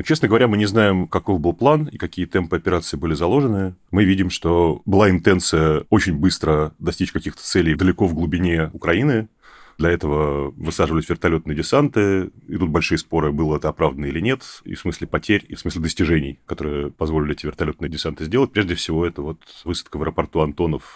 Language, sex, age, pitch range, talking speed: Russian, male, 30-49, 80-95 Hz, 180 wpm